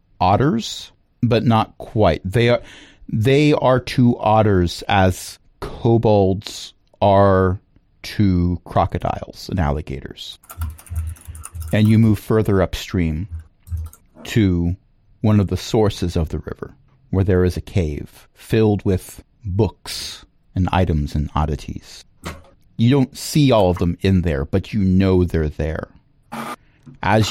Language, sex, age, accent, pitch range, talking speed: English, male, 40-59, American, 85-105 Hz, 125 wpm